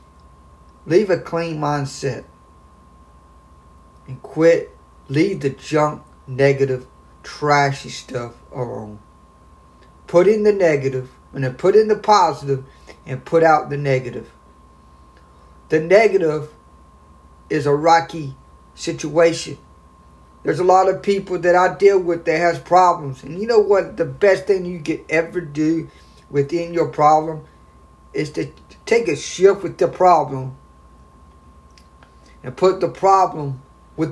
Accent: American